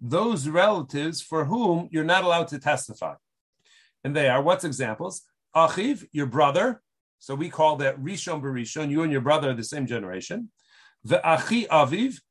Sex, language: male, English